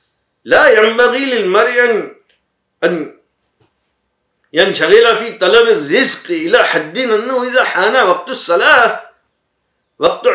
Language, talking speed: English, 95 wpm